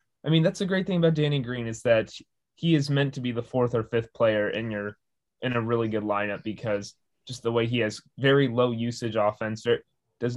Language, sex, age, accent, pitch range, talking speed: English, male, 20-39, American, 115-135 Hz, 225 wpm